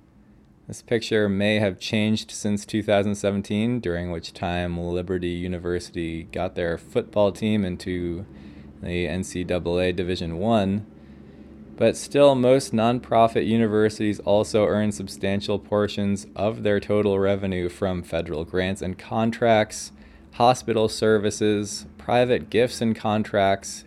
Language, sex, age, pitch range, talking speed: English, male, 20-39, 90-110 Hz, 115 wpm